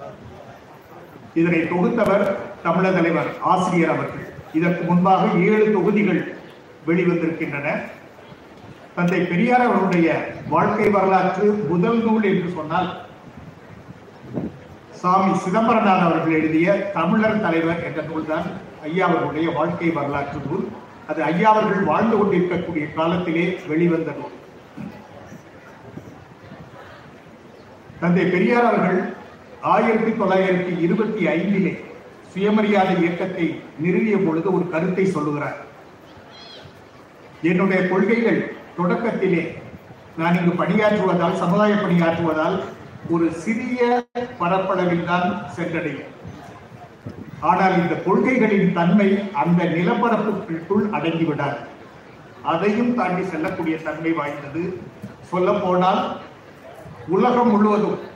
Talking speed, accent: 80 wpm, native